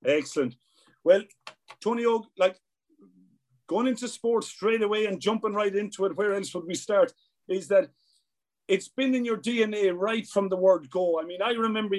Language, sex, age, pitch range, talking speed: English, male, 40-59, 170-210 Hz, 175 wpm